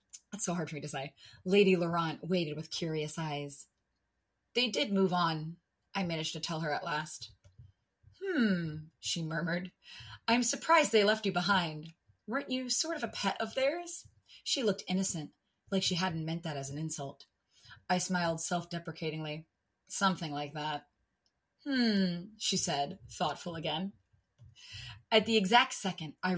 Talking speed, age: 155 wpm, 30-49